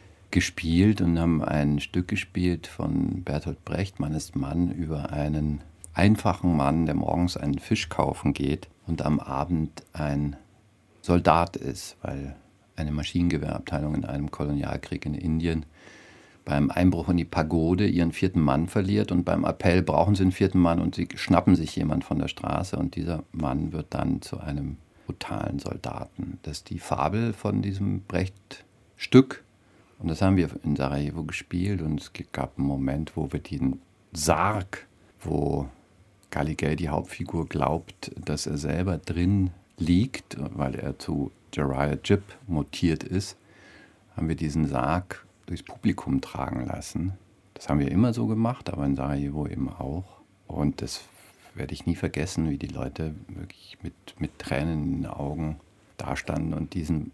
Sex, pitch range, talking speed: male, 75-95 Hz, 155 wpm